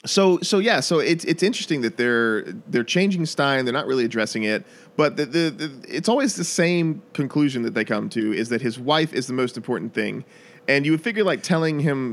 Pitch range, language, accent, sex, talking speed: 120-175 Hz, English, American, male, 230 wpm